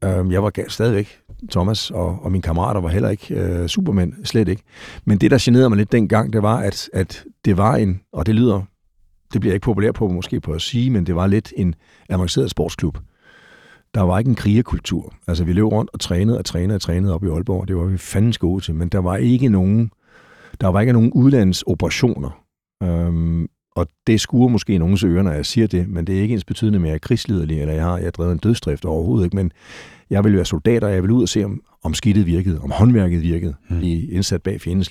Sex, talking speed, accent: male, 230 wpm, native